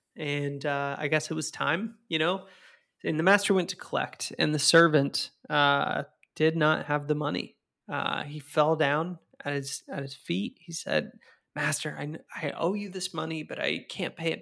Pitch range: 145-185 Hz